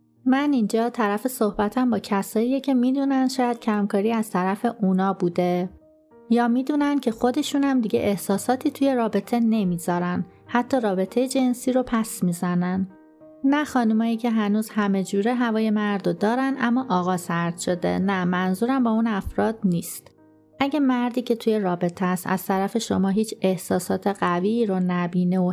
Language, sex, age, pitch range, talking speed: Persian, female, 30-49, 185-240 Hz, 150 wpm